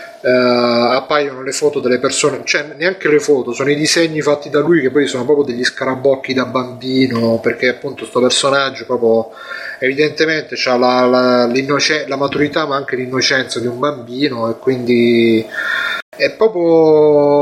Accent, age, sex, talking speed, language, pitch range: native, 30-49, male, 155 wpm, Italian, 125-150 Hz